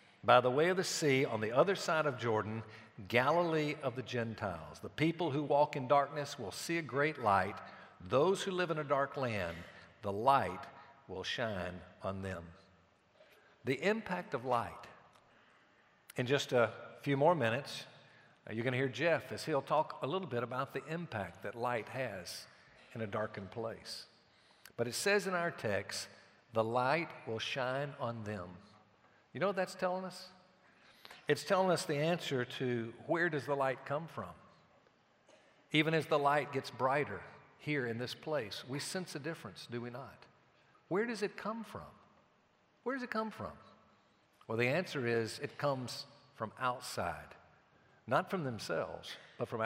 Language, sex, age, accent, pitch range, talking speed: English, male, 60-79, American, 115-165 Hz, 170 wpm